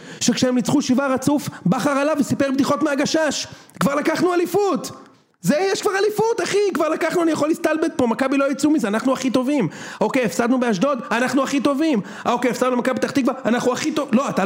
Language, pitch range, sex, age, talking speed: Hebrew, 210-275 Hz, male, 40-59, 190 wpm